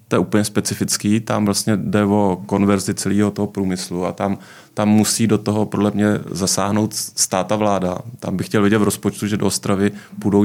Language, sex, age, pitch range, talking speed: Czech, male, 30-49, 90-100 Hz, 190 wpm